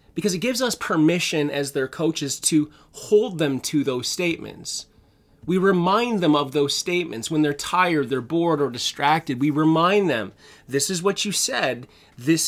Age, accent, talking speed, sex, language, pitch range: 30-49, American, 175 wpm, male, English, 140-180 Hz